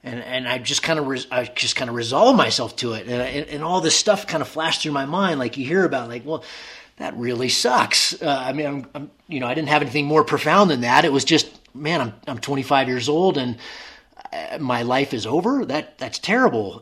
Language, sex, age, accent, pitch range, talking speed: English, male, 30-49, American, 125-160 Hz, 245 wpm